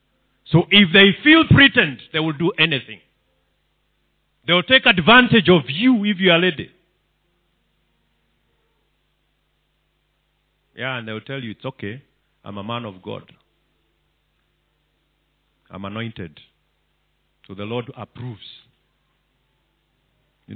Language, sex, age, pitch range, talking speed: English, male, 50-69, 115-180 Hz, 115 wpm